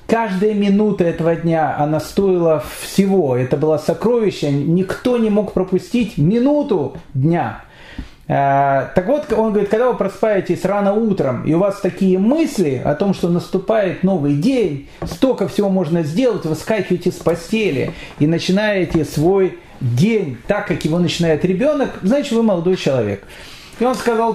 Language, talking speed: Russian, 155 wpm